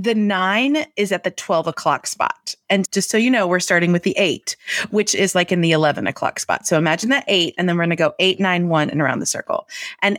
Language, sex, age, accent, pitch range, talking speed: English, female, 30-49, American, 160-205 Hz, 260 wpm